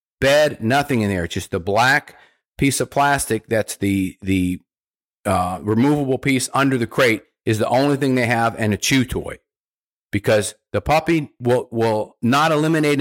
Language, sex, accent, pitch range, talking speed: English, male, American, 110-145 Hz, 170 wpm